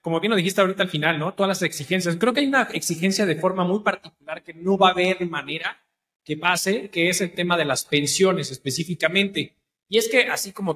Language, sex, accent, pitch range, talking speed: Spanish, male, Mexican, 160-205 Hz, 230 wpm